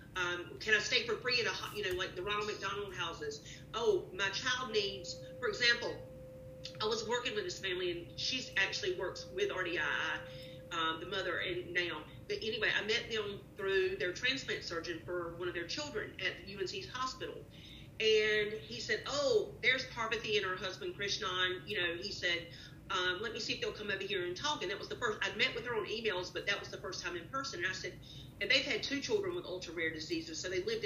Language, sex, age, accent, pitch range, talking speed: English, female, 40-59, American, 165-275 Hz, 220 wpm